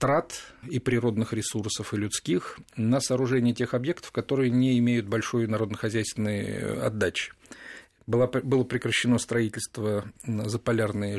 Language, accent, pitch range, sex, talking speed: Russian, native, 115-130 Hz, male, 115 wpm